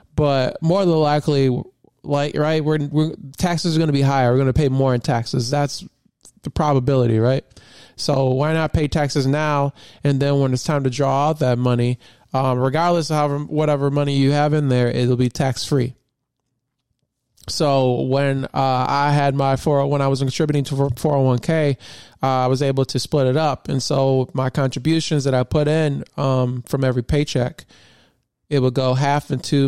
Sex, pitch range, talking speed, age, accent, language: male, 125-150 Hz, 190 wpm, 20-39, American, English